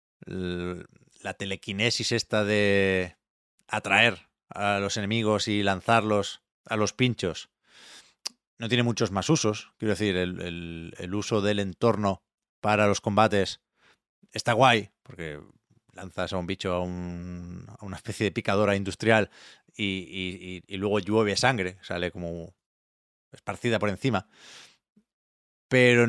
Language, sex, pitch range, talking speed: Spanish, male, 95-125 Hz, 125 wpm